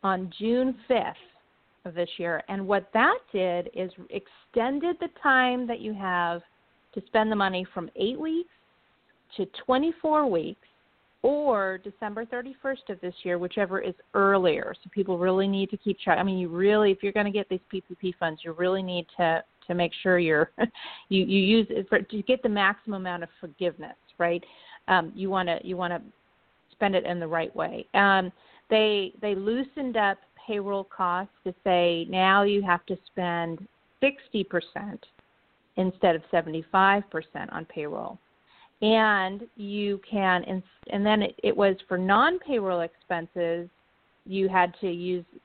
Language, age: English, 40-59